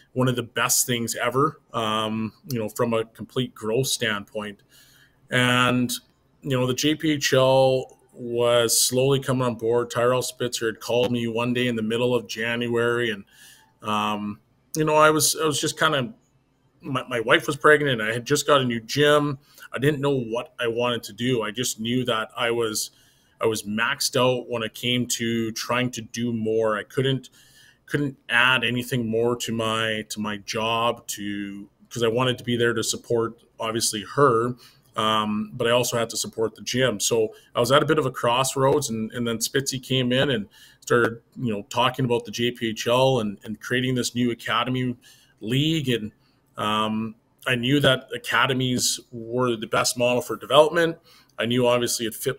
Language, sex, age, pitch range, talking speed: English, male, 20-39, 115-130 Hz, 185 wpm